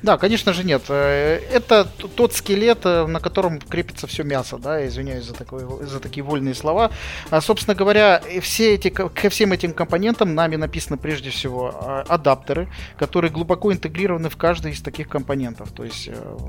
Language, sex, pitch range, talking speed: Russian, male, 135-170 Hz, 160 wpm